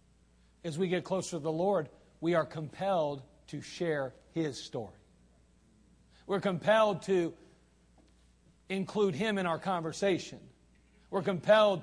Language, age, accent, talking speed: English, 40-59, American, 120 wpm